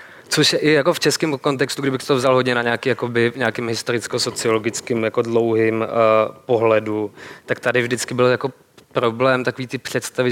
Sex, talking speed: male, 165 wpm